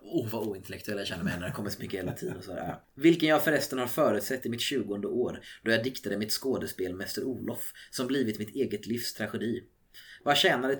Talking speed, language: 200 wpm, Swedish